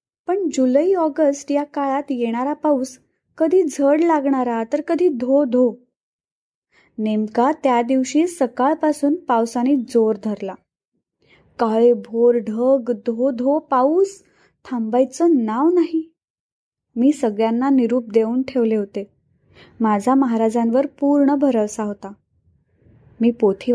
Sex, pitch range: female, 225-290 Hz